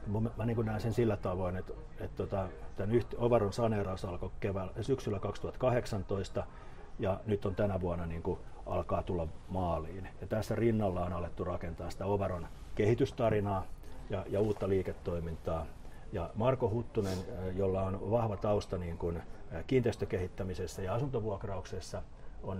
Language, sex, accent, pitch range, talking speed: Finnish, male, native, 90-105 Hz, 125 wpm